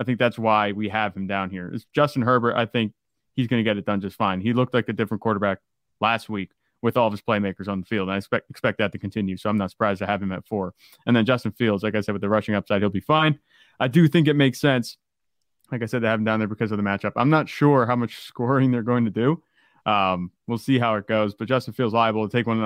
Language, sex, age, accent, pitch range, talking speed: English, male, 20-39, American, 105-130 Hz, 290 wpm